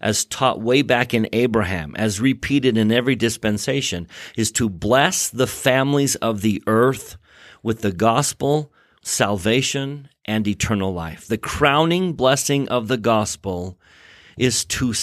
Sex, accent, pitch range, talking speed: male, American, 110-140 Hz, 135 wpm